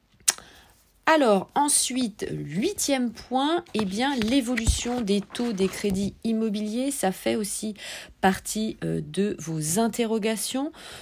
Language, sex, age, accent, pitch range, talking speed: French, female, 40-59, French, 165-230 Hz, 115 wpm